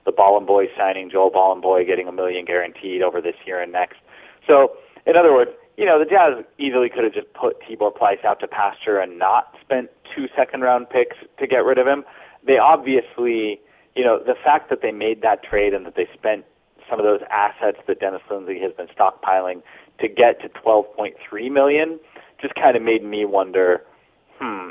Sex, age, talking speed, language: male, 30-49, 190 wpm, English